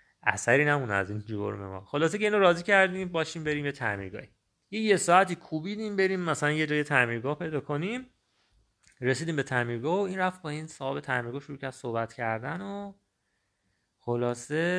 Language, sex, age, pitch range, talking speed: Persian, male, 30-49, 115-160 Hz, 175 wpm